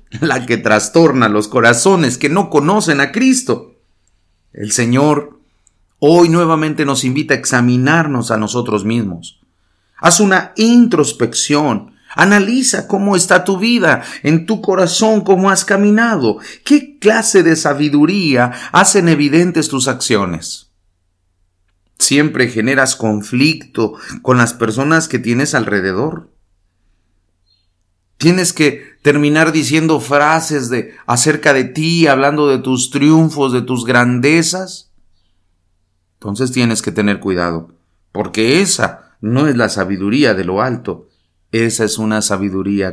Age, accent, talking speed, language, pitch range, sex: 40-59, Mexican, 120 wpm, English, 95-155 Hz, male